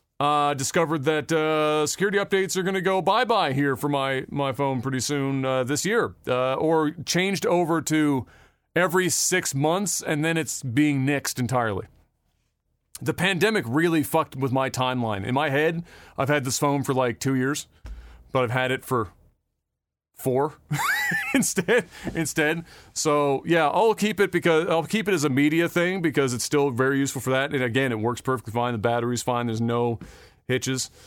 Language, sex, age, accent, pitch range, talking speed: English, male, 40-59, American, 130-160 Hz, 180 wpm